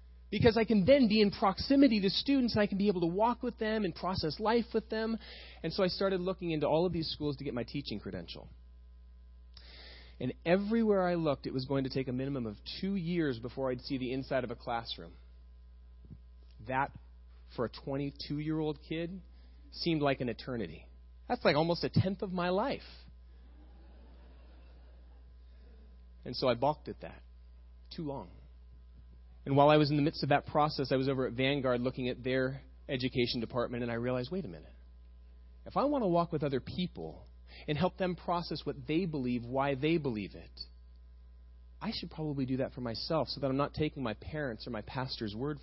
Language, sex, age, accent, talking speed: English, male, 30-49, American, 195 wpm